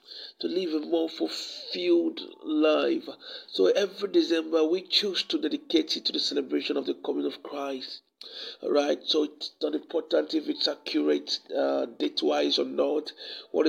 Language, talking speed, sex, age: English, 160 wpm, male, 50-69